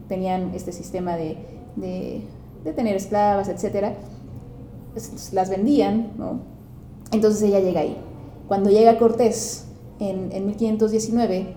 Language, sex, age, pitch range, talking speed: Spanish, female, 30-49, 185-220 Hz, 115 wpm